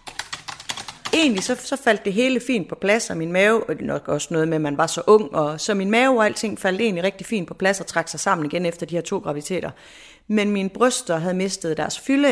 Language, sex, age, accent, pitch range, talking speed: Danish, female, 30-49, native, 160-215 Hz, 235 wpm